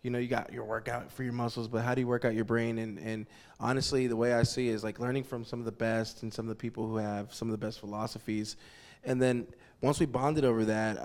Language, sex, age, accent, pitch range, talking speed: English, male, 20-39, American, 110-125 Hz, 280 wpm